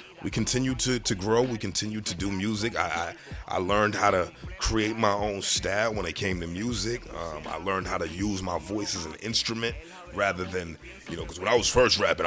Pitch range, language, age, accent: 95-115 Hz, English, 30-49, American